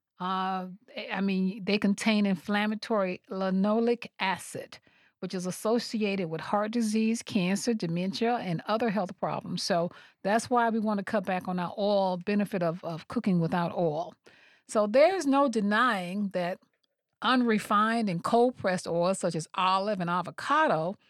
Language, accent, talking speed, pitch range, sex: English, American, 145 wpm, 185-230 Hz, female